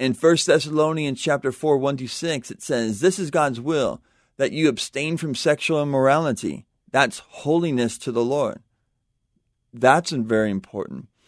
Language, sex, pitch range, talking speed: English, male, 125-155 Hz, 140 wpm